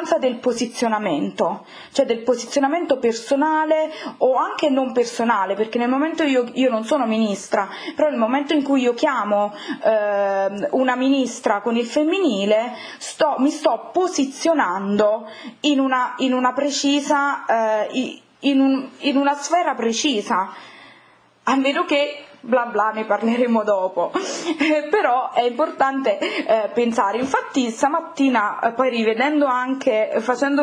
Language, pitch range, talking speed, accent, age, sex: Italian, 225-290 Hz, 125 wpm, native, 20-39, female